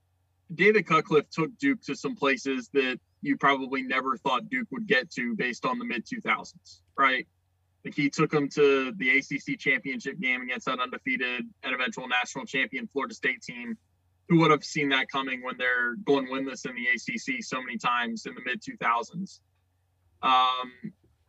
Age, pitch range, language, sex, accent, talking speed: 20-39, 115-155 Hz, English, male, American, 170 wpm